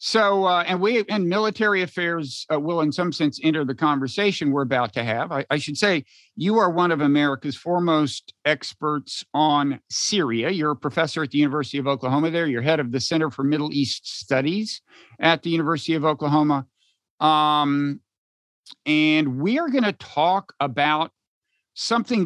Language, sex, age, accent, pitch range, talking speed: English, male, 50-69, American, 140-185 Hz, 175 wpm